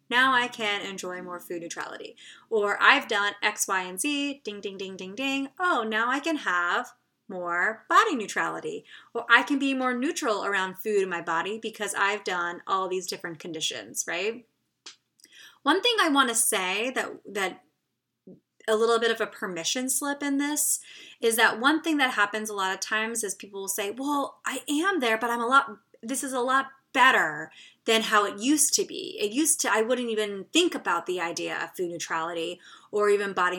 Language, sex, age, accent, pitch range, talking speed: English, female, 20-39, American, 190-270 Hz, 200 wpm